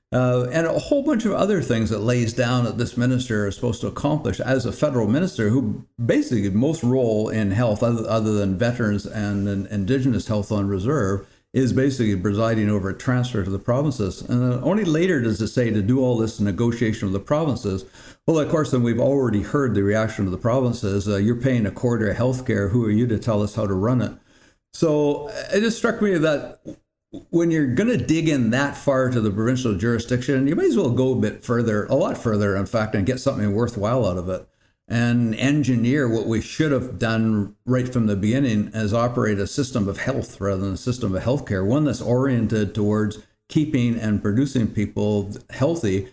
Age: 60-79